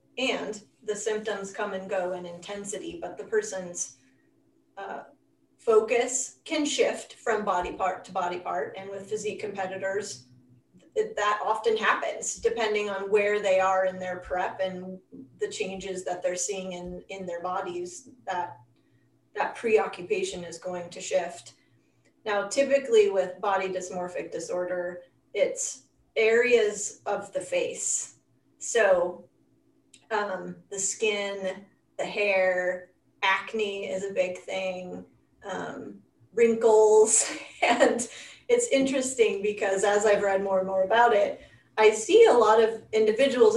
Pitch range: 185-255 Hz